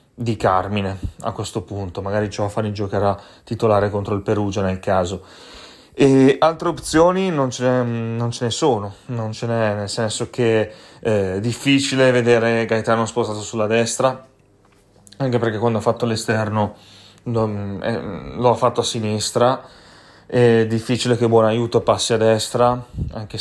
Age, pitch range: 30-49, 100-120 Hz